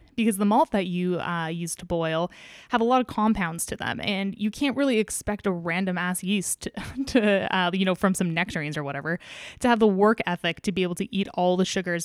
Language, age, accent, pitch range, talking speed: English, 10-29, American, 170-210 Hz, 235 wpm